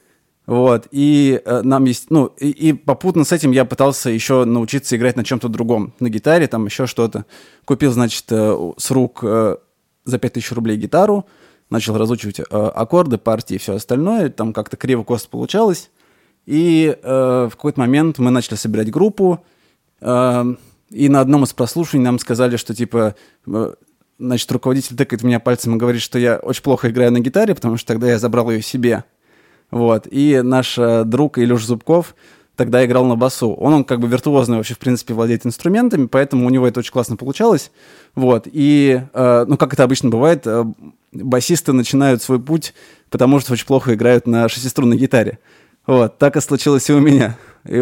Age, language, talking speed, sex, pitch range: 20-39, Russian, 180 wpm, male, 120-140 Hz